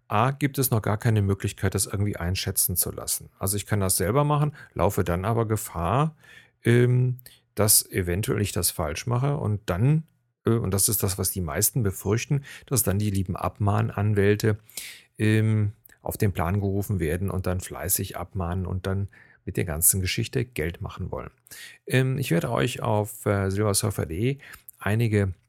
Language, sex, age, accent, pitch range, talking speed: German, male, 40-59, German, 95-115 Hz, 160 wpm